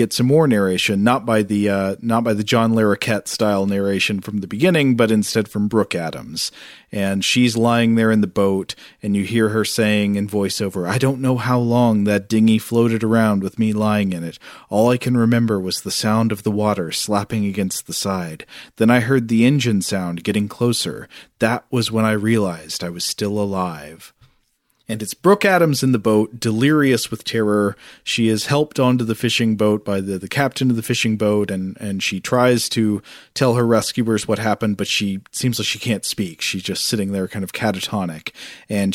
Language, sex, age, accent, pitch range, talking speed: English, male, 40-59, American, 100-120 Hz, 205 wpm